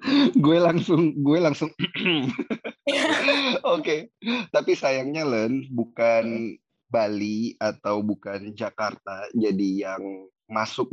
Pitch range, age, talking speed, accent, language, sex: 110-155 Hz, 20-39, 95 wpm, native, Indonesian, male